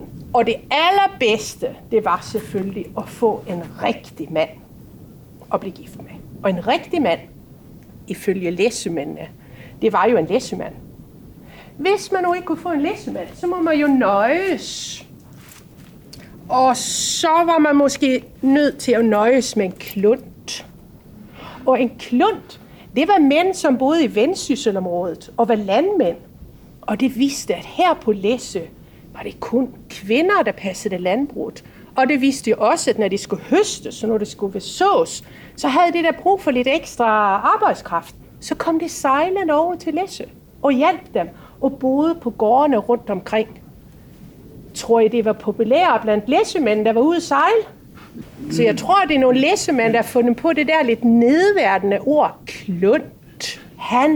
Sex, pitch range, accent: female, 220-330 Hz, native